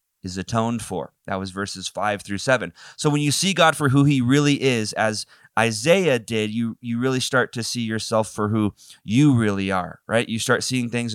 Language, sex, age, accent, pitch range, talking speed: English, male, 20-39, American, 100-120 Hz, 210 wpm